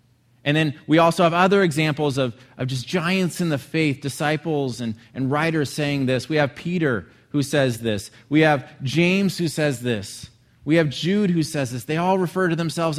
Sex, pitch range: male, 120-160 Hz